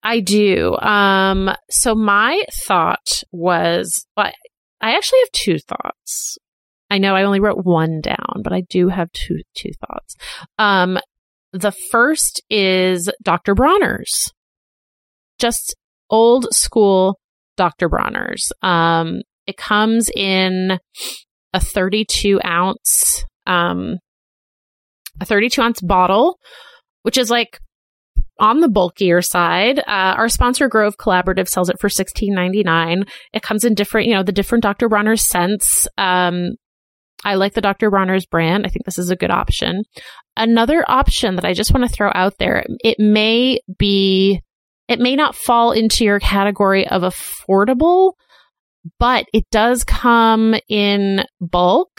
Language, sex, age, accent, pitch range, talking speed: English, female, 30-49, American, 185-230 Hz, 135 wpm